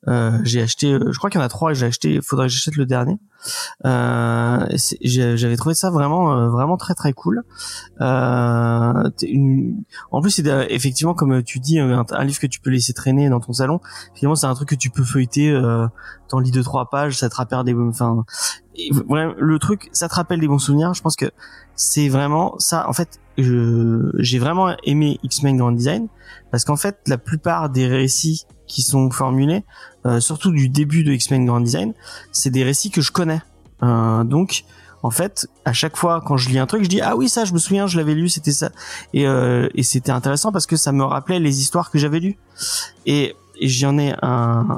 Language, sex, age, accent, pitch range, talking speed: French, male, 20-39, French, 125-165 Hz, 215 wpm